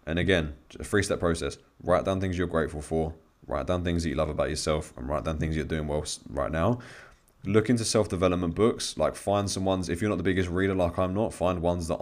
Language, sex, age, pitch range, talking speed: English, male, 20-39, 80-95 Hz, 240 wpm